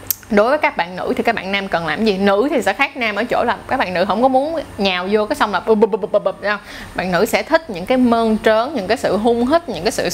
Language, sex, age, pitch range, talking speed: Vietnamese, female, 20-39, 195-265 Hz, 280 wpm